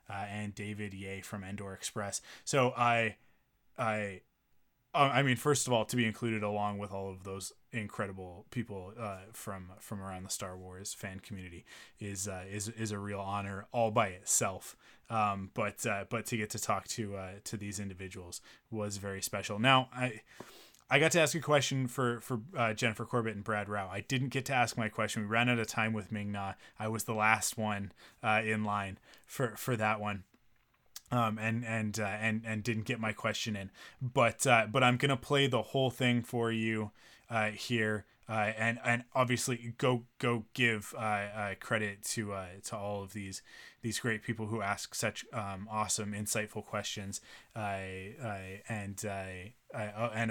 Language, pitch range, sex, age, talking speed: English, 100-120 Hz, male, 20-39, 190 wpm